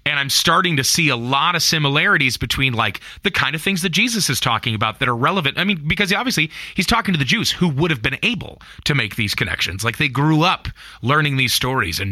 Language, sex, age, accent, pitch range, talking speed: English, male, 30-49, American, 105-140 Hz, 245 wpm